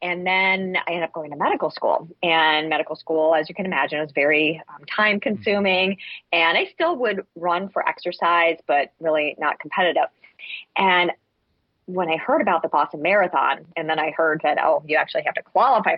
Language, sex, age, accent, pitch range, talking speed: English, female, 30-49, American, 155-185 Hz, 190 wpm